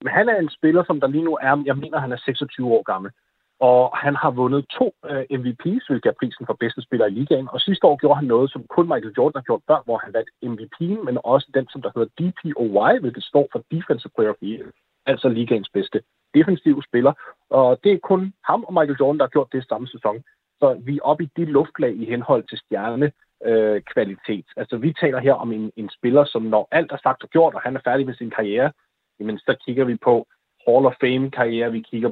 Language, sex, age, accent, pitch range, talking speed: Danish, male, 30-49, native, 115-150 Hz, 235 wpm